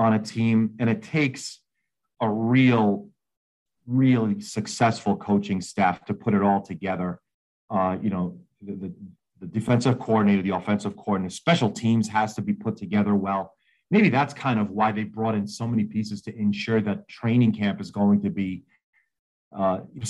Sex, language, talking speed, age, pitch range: male, English, 165 wpm, 40-59, 100-120 Hz